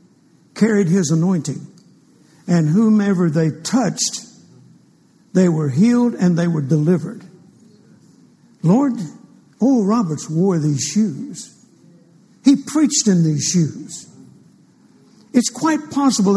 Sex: male